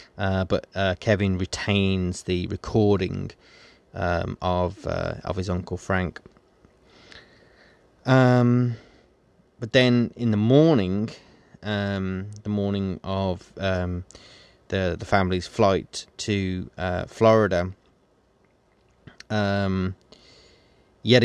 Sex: male